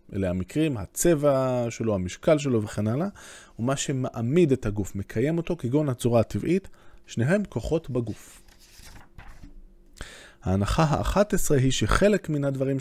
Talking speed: 125 wpm